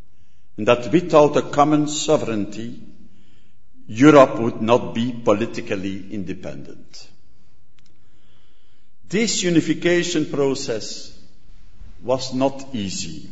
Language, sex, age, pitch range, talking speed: English, male, 60-79, 110-150 Hz, 80 wpm